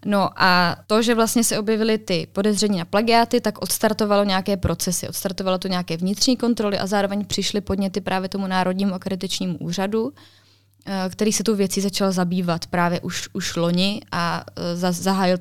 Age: 20-39